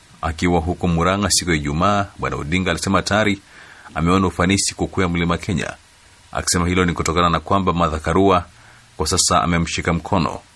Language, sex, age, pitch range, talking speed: Swahili, male, 30-49, 80-95 Hz, 150 wpm